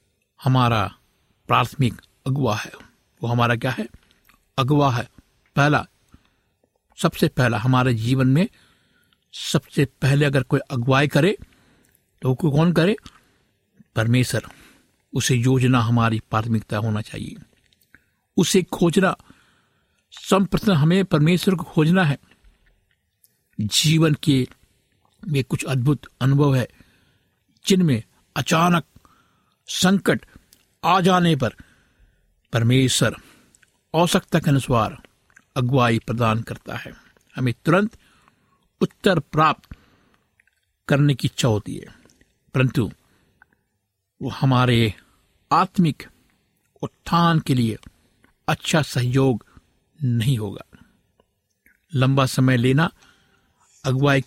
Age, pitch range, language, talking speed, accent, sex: 60-79, 120-160 Hz, Hindi, 95 wpm, native, male